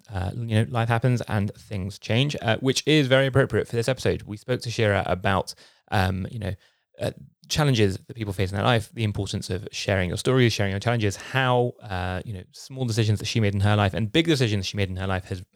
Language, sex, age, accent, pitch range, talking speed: English, male, 20-39, British, 95-120 Hz, 245 wpm